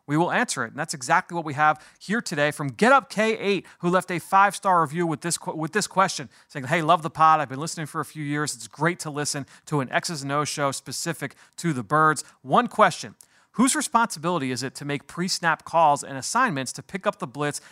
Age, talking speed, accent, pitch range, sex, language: 30-49, 225 wpm, American, 145-170 Hz, male, English